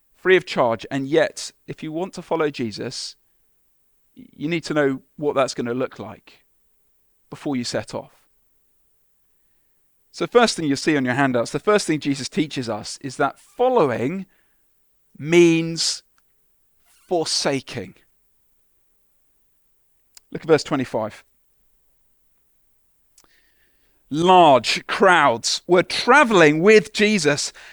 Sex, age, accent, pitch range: male, 40-59, British, 140-215 Hz